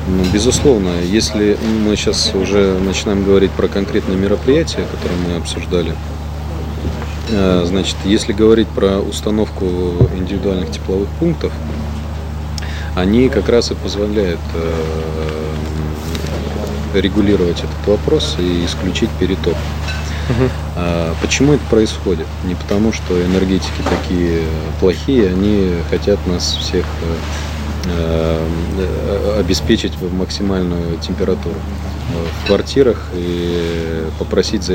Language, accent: Russian, native